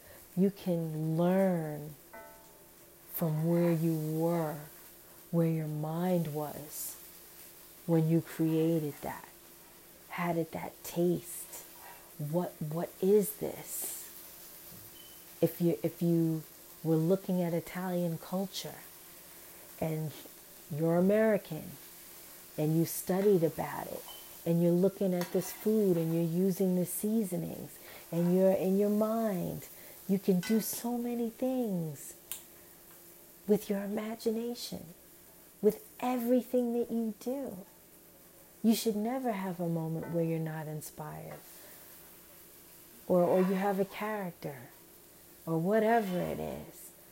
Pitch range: 165-200 Hz